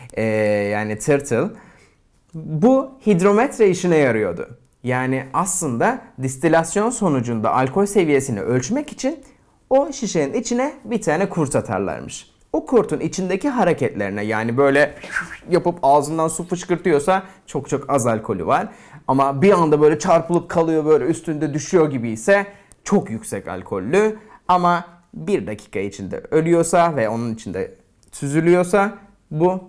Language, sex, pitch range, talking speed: Turkish, male, 130-190 Hz, 125 wpm